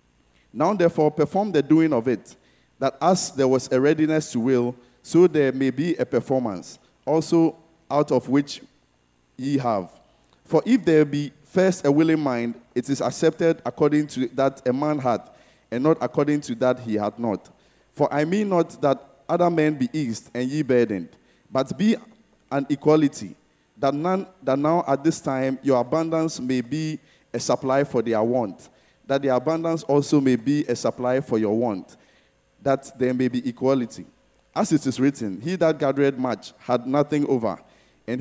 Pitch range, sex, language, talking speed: 125-155 Hz, male, English, 175 wpm